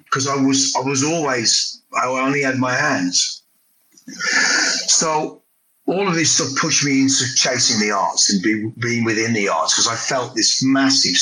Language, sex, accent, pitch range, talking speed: English, male, British, 115-190 Hz, 170 wpm